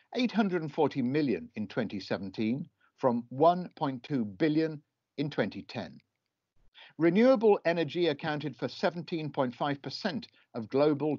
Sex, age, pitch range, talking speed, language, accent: male, 60-79, 120-175 Hz, 85 wpm, English, British